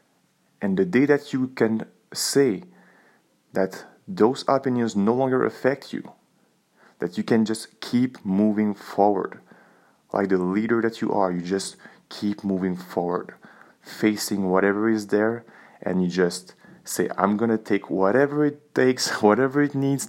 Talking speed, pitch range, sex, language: 150 wpm, 100-145 Hz, male, English